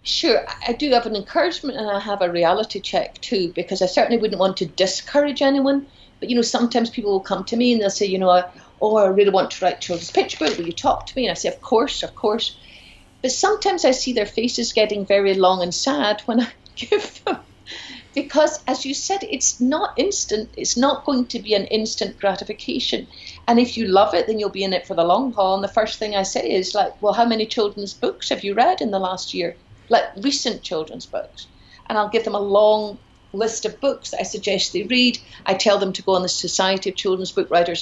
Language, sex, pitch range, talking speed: English, female, 185-235 Hz, 235 wpm